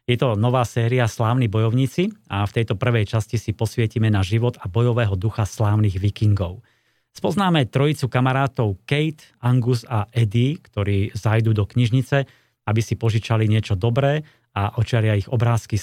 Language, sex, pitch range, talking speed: Slovak, male, 105-130 Hz, 150 wpm